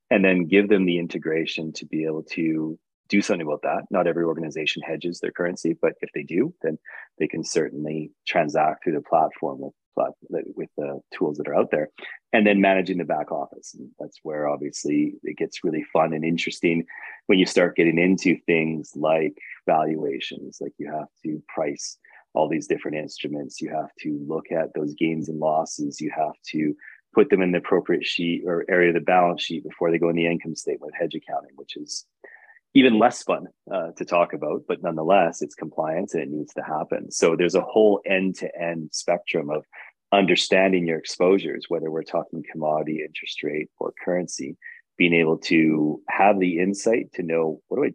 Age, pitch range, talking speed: 30-49, 80-95 Hz, 190 wpm